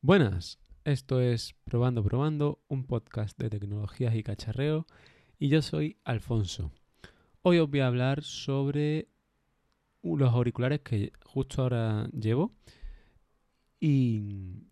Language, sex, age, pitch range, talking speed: Spanish, male, 20-39, 110-140 Hz, 115 wpm